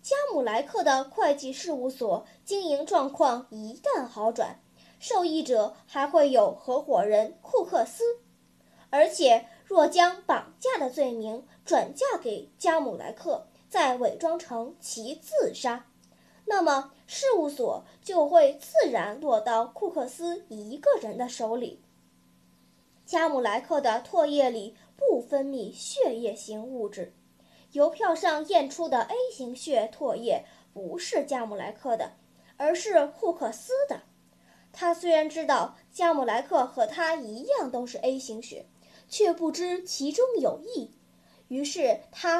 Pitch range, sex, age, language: 250-335 Hz, male, 10-29, Chinese